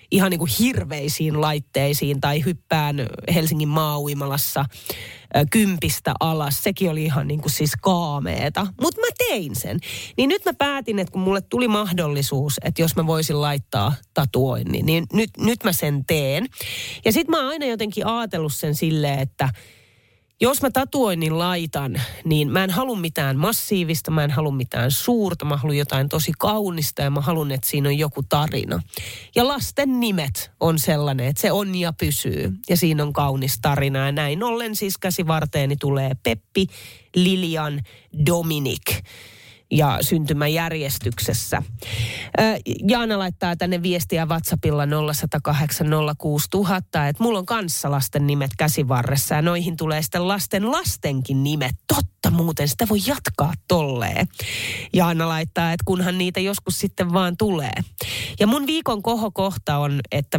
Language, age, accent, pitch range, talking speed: Finnish, 30-49, native, 140-185 Hz, 150 wpm